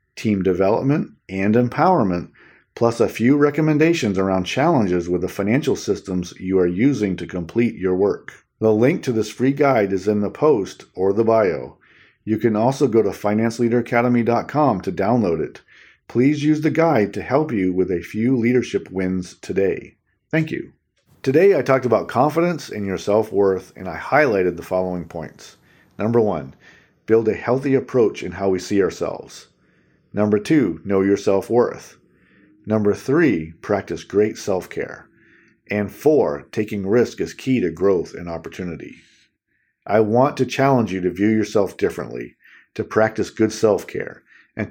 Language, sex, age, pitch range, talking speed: English, male, 40-59, 95-125 Hz, 160 wpm